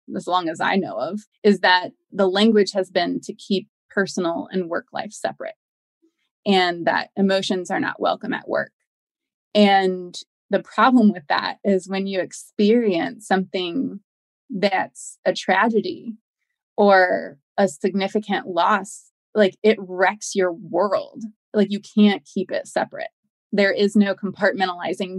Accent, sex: American, female